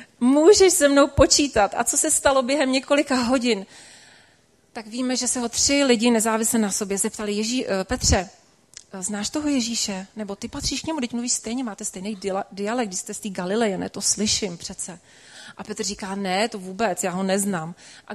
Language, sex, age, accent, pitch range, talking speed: Czech, female, 30-49, native, 200-245 Hz, 190 wpm